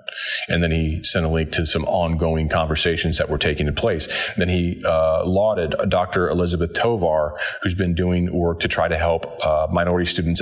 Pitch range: 85-105 Hz